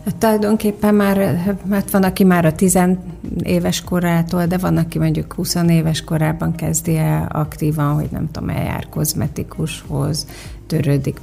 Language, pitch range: Hungarian, 150-175 Hz